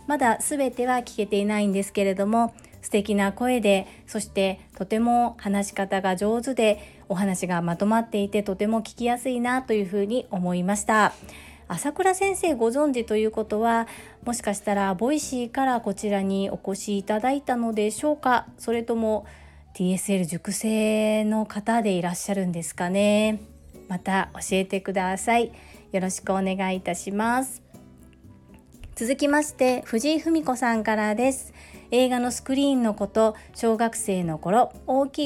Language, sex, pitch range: Japanese, female, 195-250 Hz